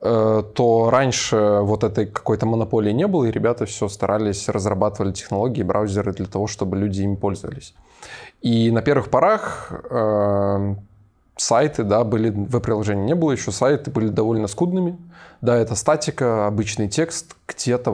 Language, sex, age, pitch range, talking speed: Russian, male, 20-39, 105-130 Hz, 145 wpm